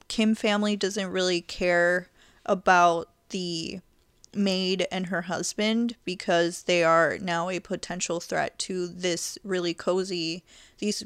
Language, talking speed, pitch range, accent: English, 125 wpm, 175-205 Hz, American